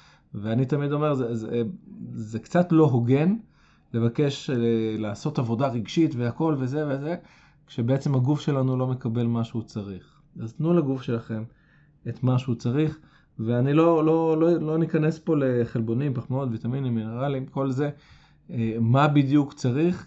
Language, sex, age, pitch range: Hebrew, male, 20-39, 115-150 Hz